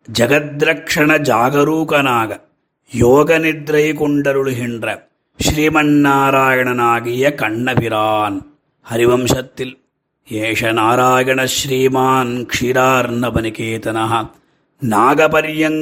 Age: 30-49